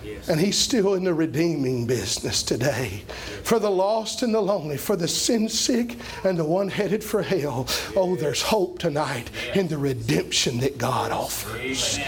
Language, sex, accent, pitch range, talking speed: English, male, American, 155-235 Hz, 170 wpm